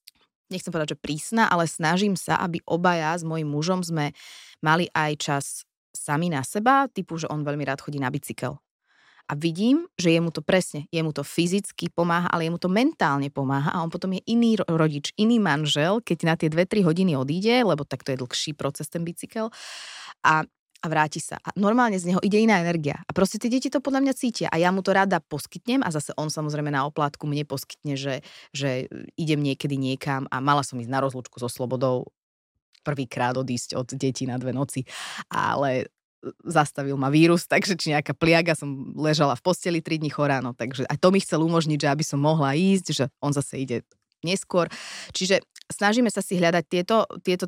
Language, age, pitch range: Slovak, 20-39, 145-180 Hz